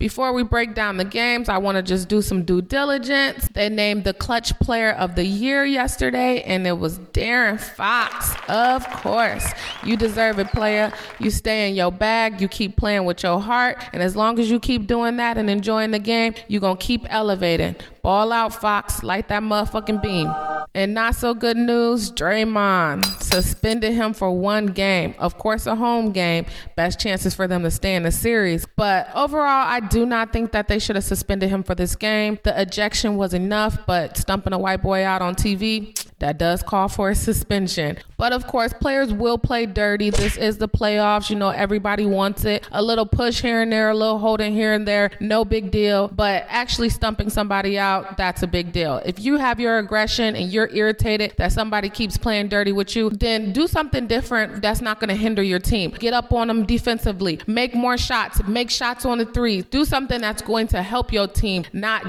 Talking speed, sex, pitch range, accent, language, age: 205 wpm, female, 195-230 Hz, American, English, 20-39